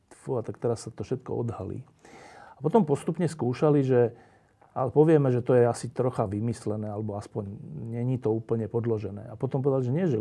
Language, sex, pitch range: Slovak, male, 120-155 Hz